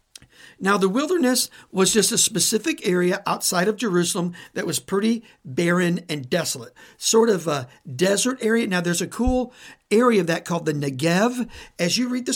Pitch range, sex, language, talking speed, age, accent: 170-240 Hz, male, English, 175 wpm, 50-69, American